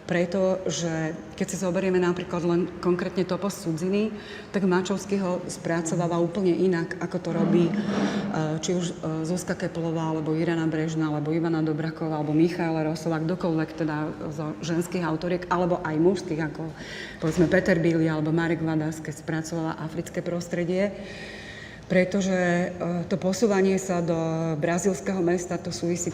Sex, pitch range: female, 160-185 Hz